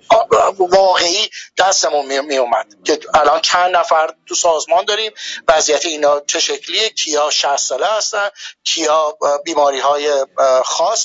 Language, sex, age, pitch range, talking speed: Persian, male, 60-79, 150-210 Hz, 120 wpm